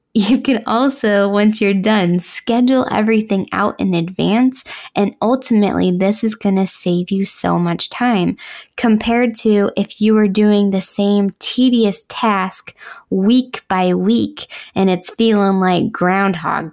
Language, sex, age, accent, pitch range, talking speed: English, female, 20-39, American, 180-225 Hz, 145 wpm